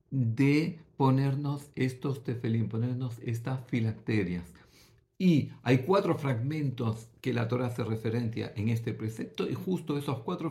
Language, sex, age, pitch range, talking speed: Greek, male, 50-69, 115-150 Hz, 130 wpm